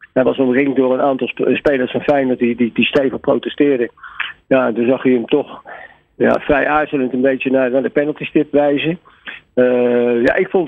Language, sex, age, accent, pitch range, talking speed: Dutch, male, 50-69, Dutch, 120-145 Hz, 190 wpm